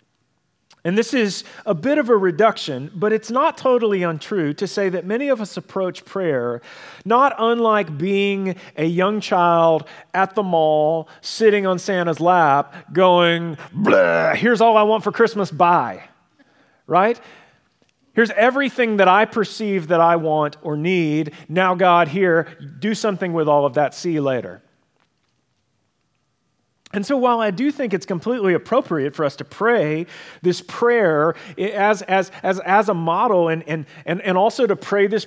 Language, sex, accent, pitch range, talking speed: English, male, American, 165-220 Hz, 160 wpm